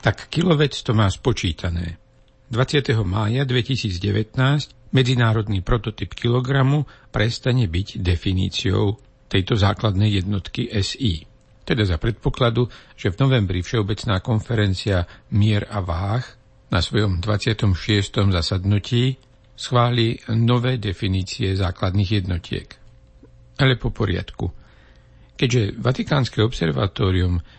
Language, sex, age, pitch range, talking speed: Slovak, male, 60-79, 95-120 Hz, 95 wpm